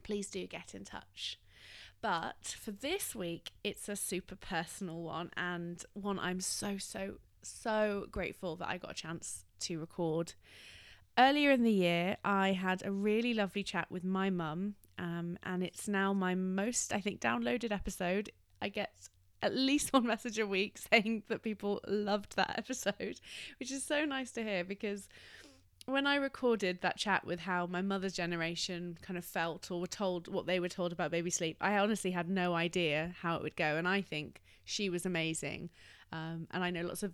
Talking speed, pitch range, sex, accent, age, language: 185 wpm, 165-210 Hz, female, British, 20-39, English